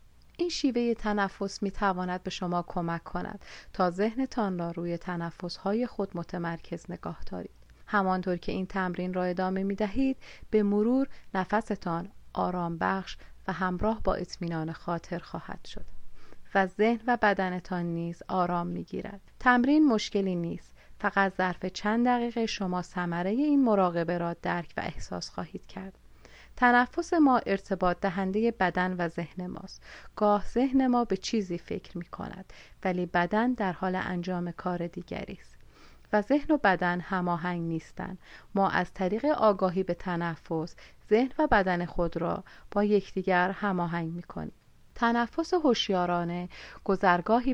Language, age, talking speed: Persian, 30-49, 140 wpm